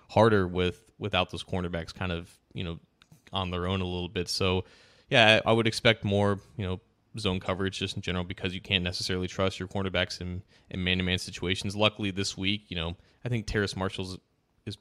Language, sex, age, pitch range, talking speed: English, male, 20-39, 90-105 Hz, 200 wpm